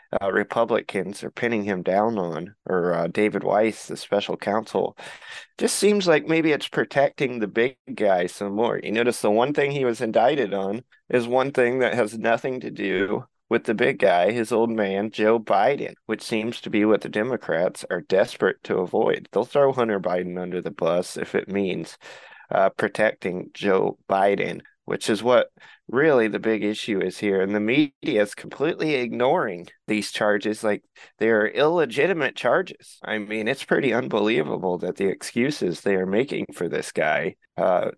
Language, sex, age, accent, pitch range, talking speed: English, male, 20-39, American, 100-120 Hz, 175 wpm